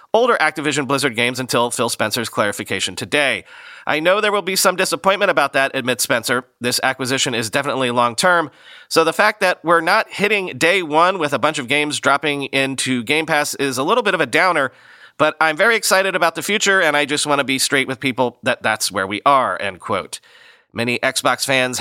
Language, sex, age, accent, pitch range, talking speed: English, male, 40-59, American, 130-160 Hz, 210 wpm